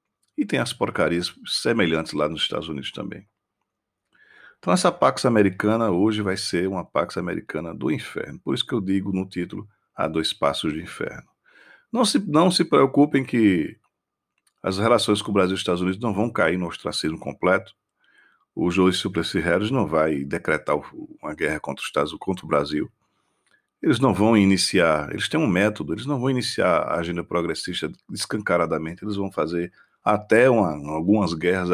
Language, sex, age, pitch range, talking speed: Portuguese, male, 40-59, 85-105 Hz, 170 wpm